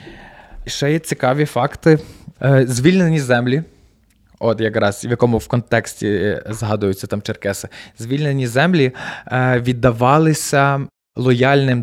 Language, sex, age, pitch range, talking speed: Ukrainian, male, 20-39, 120-140 Hz, 100 wpm